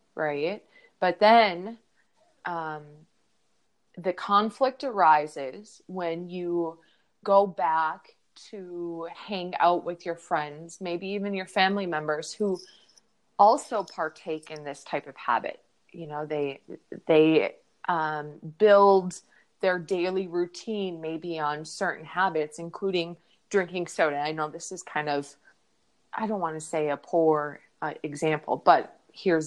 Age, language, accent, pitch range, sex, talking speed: 20-39, English, American, 155-200 Hz, female, 130 wpm